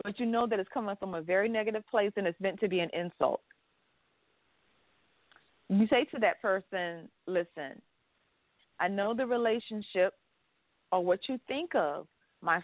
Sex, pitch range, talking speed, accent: female, 170-220 Hz, 160 wpm, American